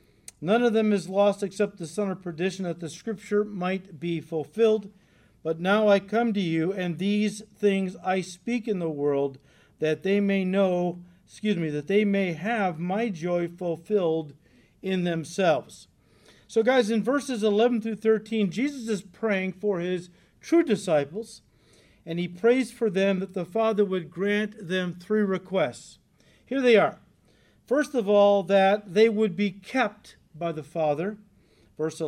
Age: 50-69